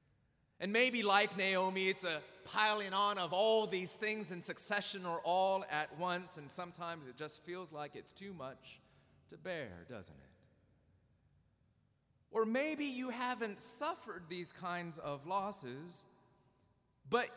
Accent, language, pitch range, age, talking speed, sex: American, English, 155-230 Hz, 30-49, 140 wpm, male